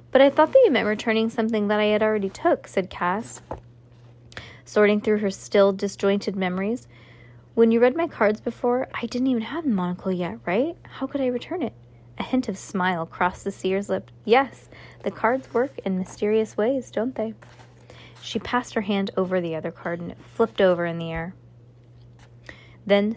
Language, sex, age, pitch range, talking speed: English, female, 20-39, 175-225 Hz, 190 wpm